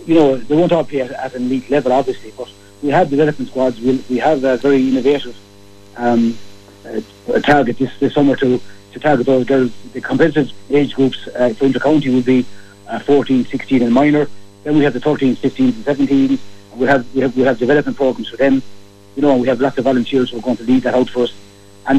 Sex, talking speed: male, 235 wpm